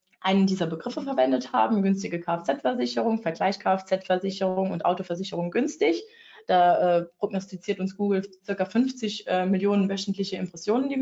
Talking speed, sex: 130 wpm, female